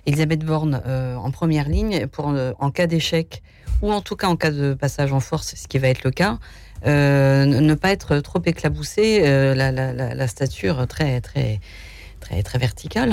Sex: female